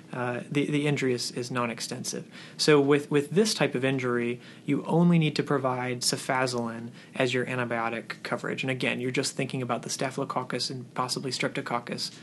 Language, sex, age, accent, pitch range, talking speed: English, male, 30-49, American, 125-145 Hz, 170 wpm